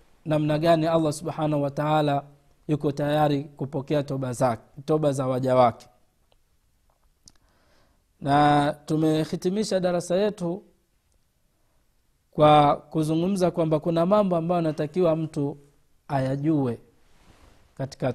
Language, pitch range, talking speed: Swahili, 135-170 Hz, 100 wpm